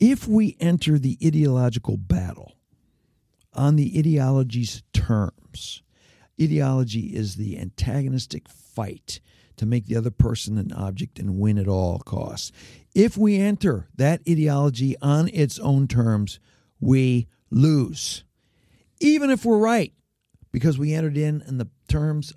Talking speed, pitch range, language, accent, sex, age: 130 wpm, 100-140 Hz, English, American, male, 50-69